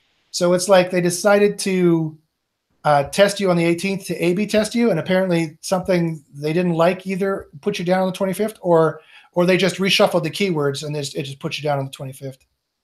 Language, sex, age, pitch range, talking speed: English, male, 40-59, 155-195 Hz, 220 wpm